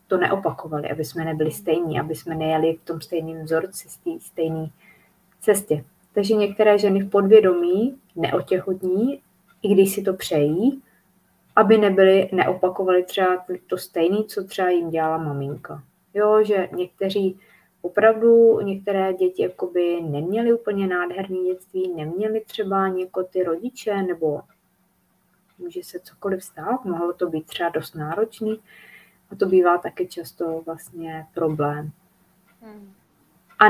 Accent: native